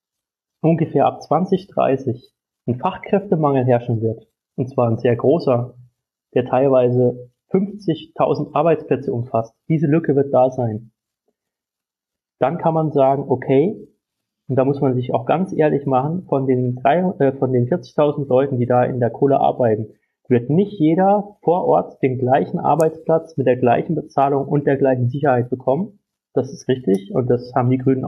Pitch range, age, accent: 125-160 Hz, 30-49, German